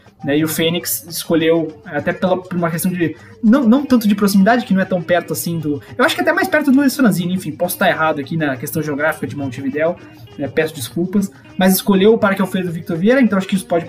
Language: Portuguese